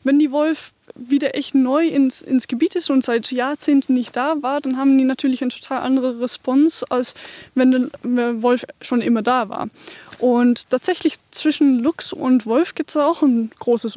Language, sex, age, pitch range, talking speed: German, female, 10-29, 240-280 Hz, 185 wpm